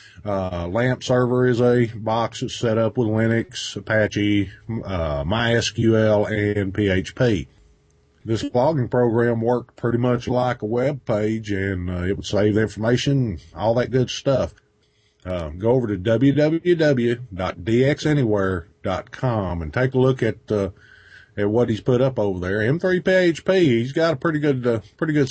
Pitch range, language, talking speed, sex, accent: 105-140 Hz, English, 160 wpm, male, American